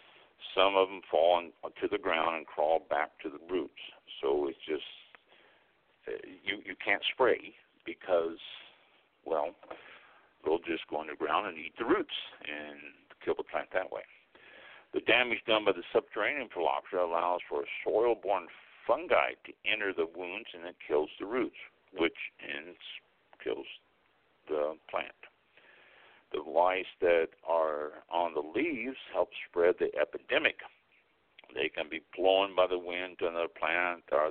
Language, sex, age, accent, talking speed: English, male, 60-79, American, 145 wpm